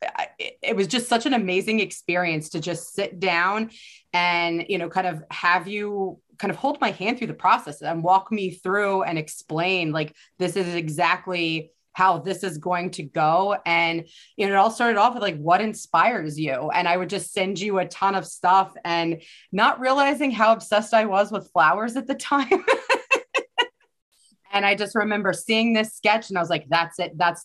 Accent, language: American, English